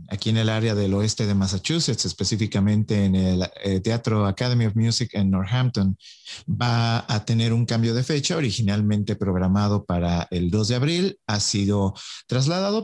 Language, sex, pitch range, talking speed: English, male, 105-145 Hz, 165 wpm